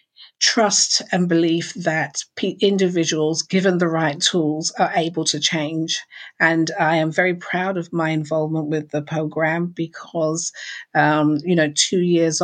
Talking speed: 145 wpm